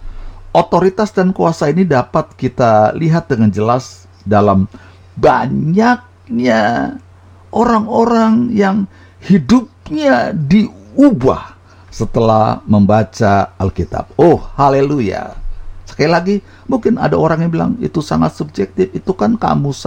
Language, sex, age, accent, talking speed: Indonesian, male, 50-69, native, 100 wpm